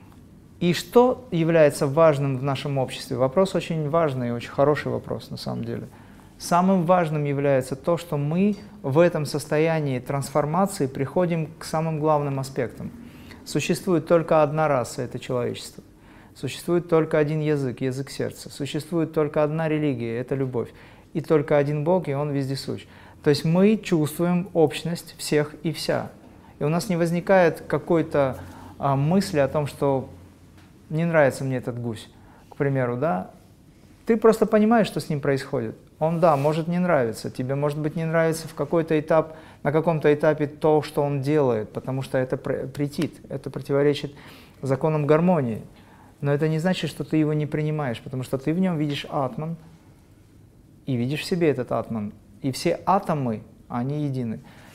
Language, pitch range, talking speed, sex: Russian, 135-160 Hz, 160 wpm, male